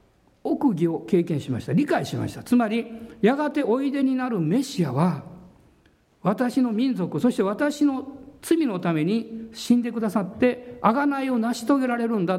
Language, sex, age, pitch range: Japanese, male, 50-69, 175-260 Hz